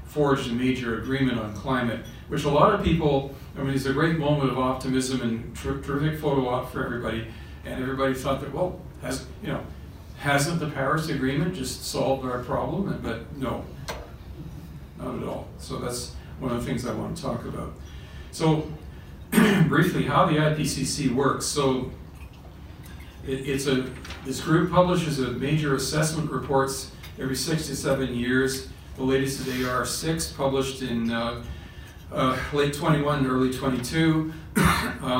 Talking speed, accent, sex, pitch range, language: 160 wpm, American, male, 125-145 Hz, English